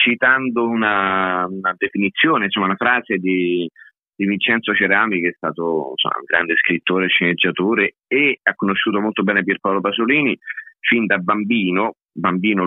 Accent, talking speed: native, 140 wpm